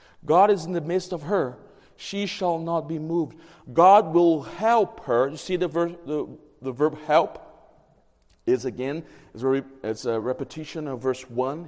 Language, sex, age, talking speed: English, male, 40-59, 165 wpm